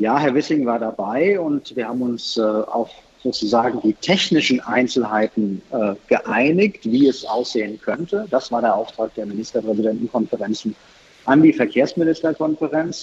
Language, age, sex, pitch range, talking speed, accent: German, 50-69, male, 115-135 Hz, 140 wpm, German